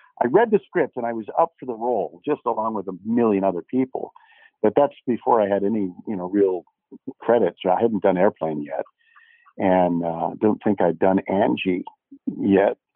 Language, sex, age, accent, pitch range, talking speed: English, male, 50-69, American, 95-135 Hz, 190 wpm